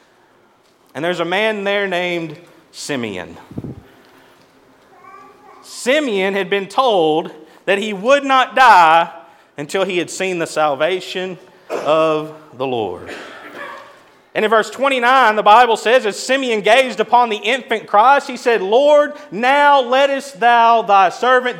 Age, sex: 30-49, male